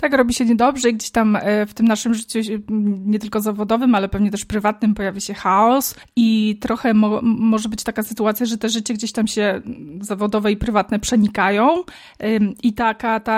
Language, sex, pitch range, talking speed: Polish, female, 210-240 Hz, 180 wpm